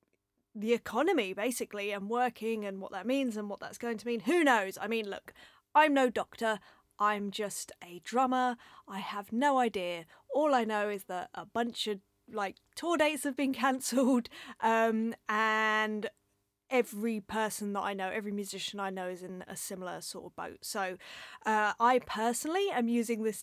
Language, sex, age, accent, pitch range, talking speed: English, female, 30-49, British, 205-250 Hz, 175 wpm